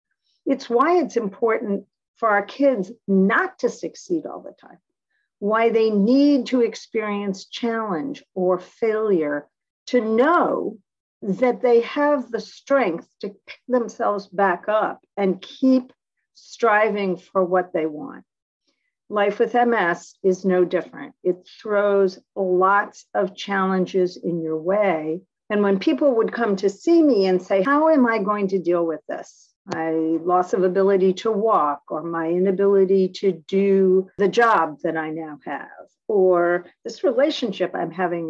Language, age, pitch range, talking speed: English, 50-69, 180-230 Hz, 145 wpm